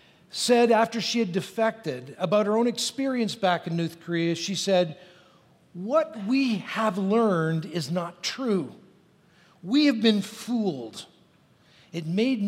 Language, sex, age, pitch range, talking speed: English, male, 50-69, 170-240 Hz, 135 wpm